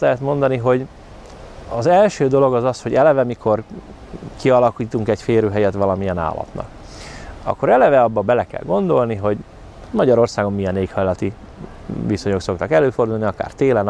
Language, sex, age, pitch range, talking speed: Hungarian, male, 30-49, 100-120 Hz, 135 wpm